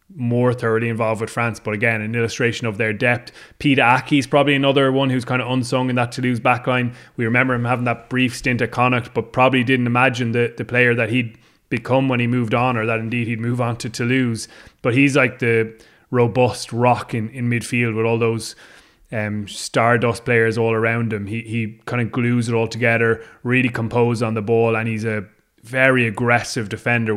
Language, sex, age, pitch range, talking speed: English, male, 20-39, 115-125 Hz, 210 wpm